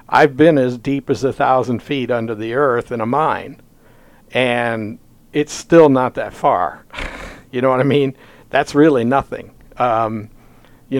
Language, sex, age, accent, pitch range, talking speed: English, male, 60-79, American, 115-140 Hz, 165 wpm